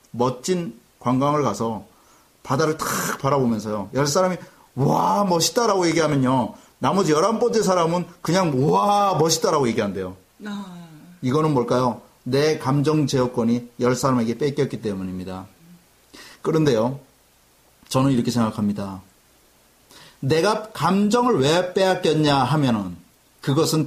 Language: Korean